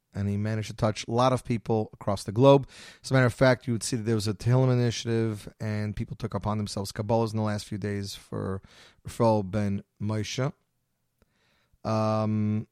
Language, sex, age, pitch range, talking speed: English, male, 30-49, 105-125 Hz, 200 wpm